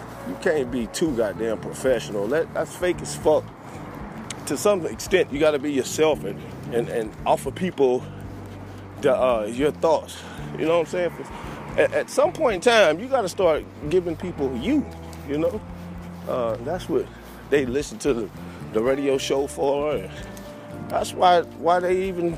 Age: 30-49